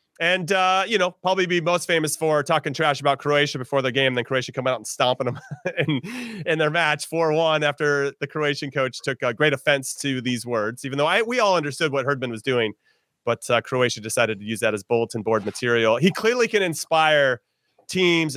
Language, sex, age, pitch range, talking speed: English, male, 30-49, 130-170 Hz, 210 wpm